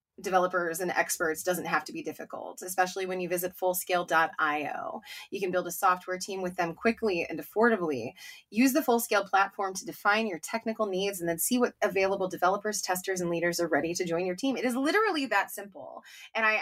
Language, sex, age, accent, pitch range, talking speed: English, female, 20-39, American, 180-225 Hz, 200 wpm